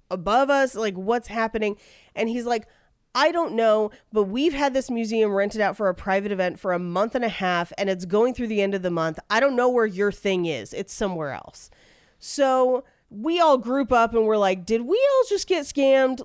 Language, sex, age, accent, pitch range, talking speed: English, female, 30-49, American, 205-270 Hz, 225 wpm